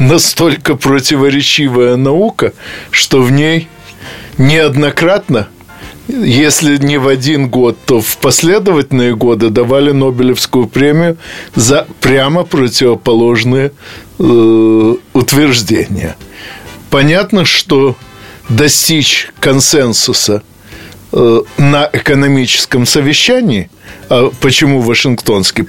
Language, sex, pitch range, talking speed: Russian, male, 120-145 Hz, 80 wpm